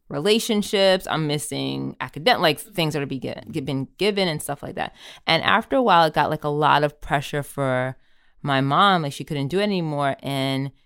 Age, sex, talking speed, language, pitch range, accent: 20-39, female, 195 wpm, English, 135-155 Hz, American